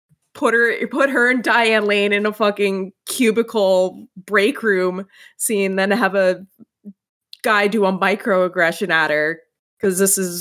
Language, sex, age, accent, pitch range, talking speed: English, female, 20-39, American, 165-220 Hz, 150 wpm